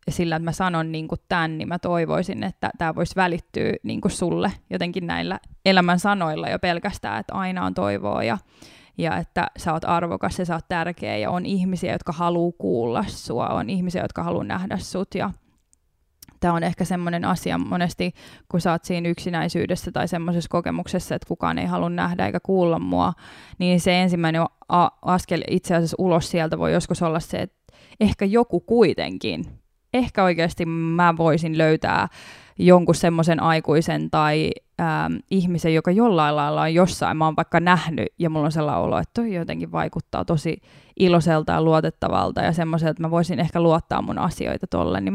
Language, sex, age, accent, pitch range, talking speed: Finnish, female, 20-39, native, 160-180 Hz, 170 wpm